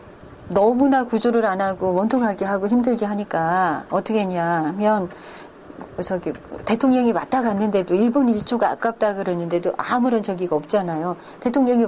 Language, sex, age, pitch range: Korean, female, 40-59, 190-255 Hz